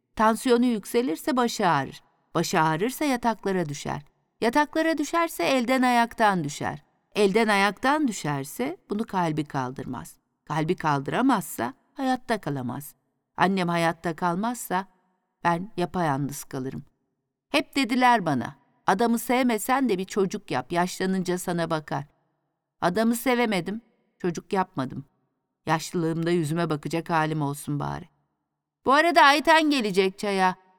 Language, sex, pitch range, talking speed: Turkish, female, 165-245 Hz, 110 wpm